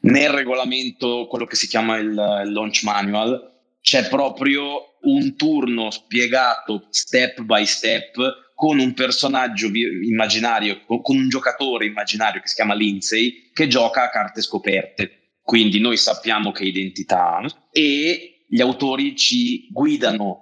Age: 30-49